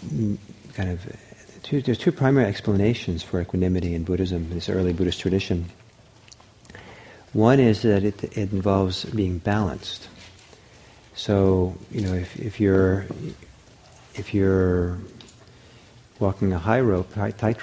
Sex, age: male, 50-69